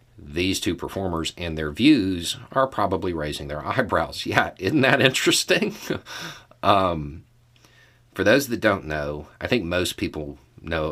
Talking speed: 145 wpm